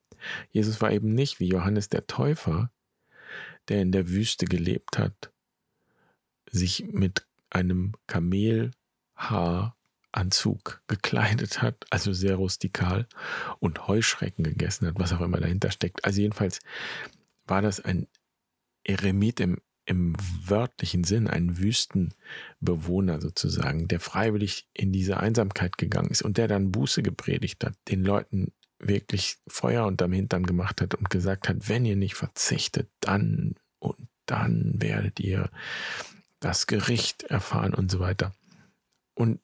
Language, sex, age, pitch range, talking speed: German, male, 40-59, 95-110 Hz, 130 wpm